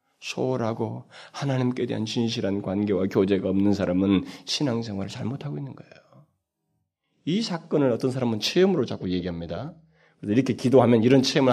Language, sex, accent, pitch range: Korean, male, native, 95-140 Hz